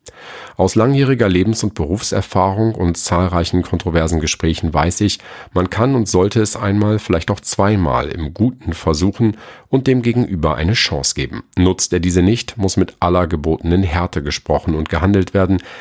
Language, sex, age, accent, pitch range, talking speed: German, male, 40-59, German, 80-110 Hz, 160 wpm